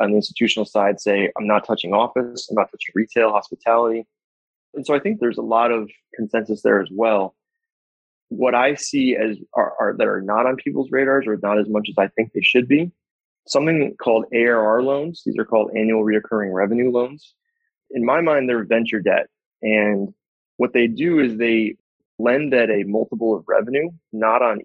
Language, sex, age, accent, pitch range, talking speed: English, male, 20-39, American, 110-140 Hz, 190 wpm